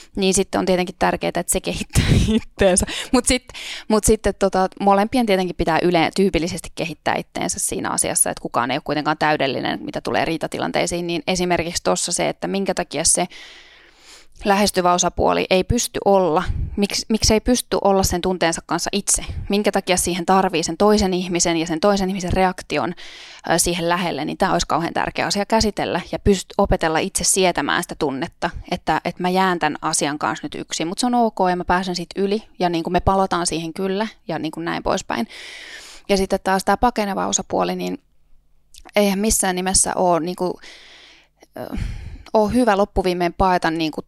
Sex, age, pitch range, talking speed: female, 20-39, 170-200 Hz, 175 wpm